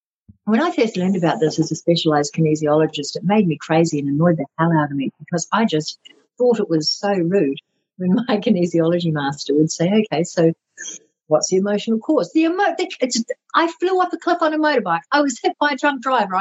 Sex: female